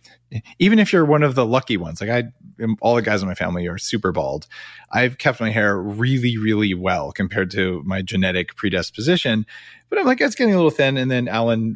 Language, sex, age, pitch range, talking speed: English, male, 30-49, 100-125 Hz, 215 wpm